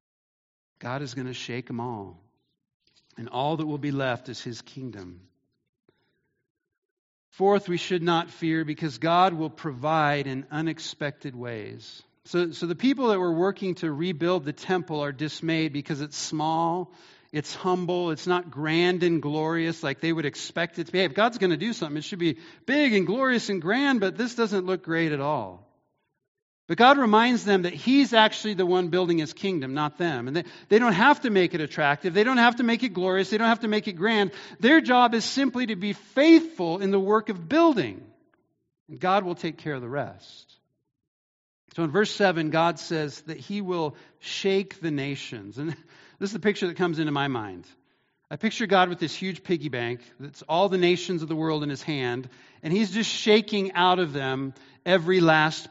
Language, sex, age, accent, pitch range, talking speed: English, male, 50-69, American, 145-195 Hz, 200 wpm